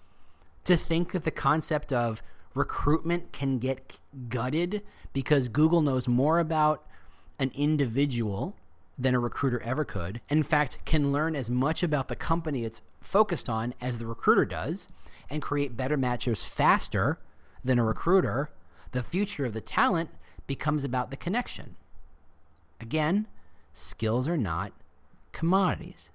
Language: English